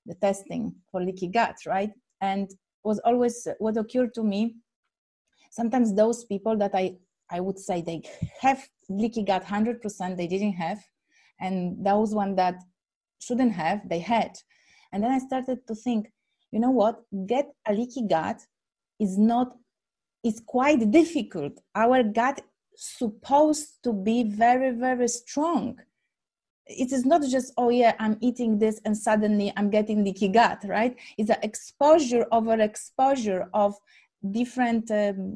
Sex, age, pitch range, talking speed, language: female, 30-49, 200-240 Hz, 150 wpm, English